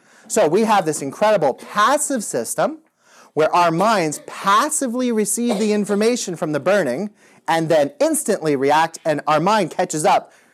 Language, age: English, 30-49